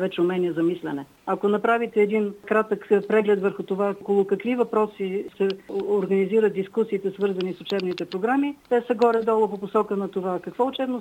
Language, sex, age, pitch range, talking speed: Bulgarian, female, 50-69, 180-215 Hz, 165 wpm